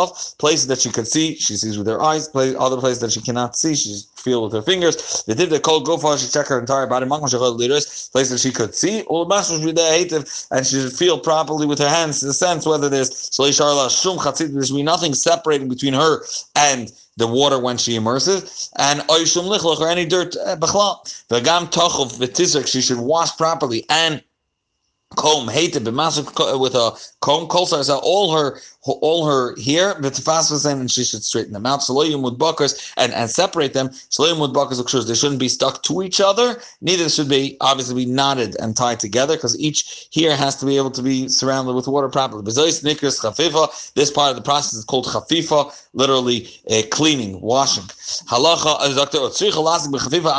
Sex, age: male, 30-49